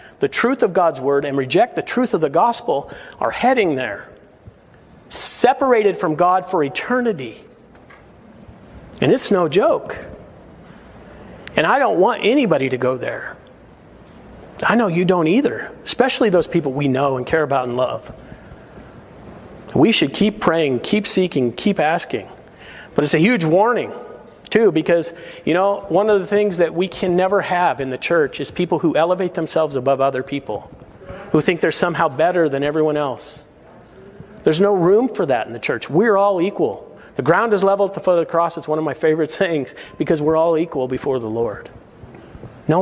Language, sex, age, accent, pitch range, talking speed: English, male, 40-59, American, 140-185 Hz, 175 wpm